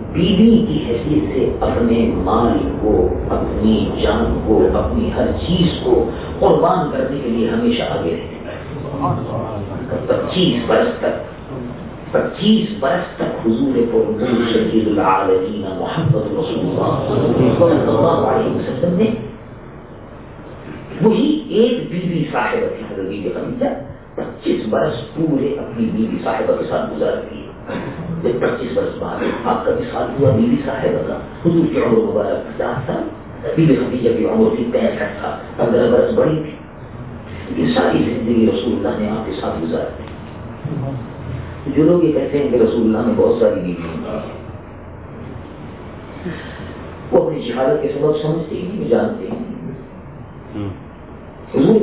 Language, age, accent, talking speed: English, 50-69, Indian, 70 wpm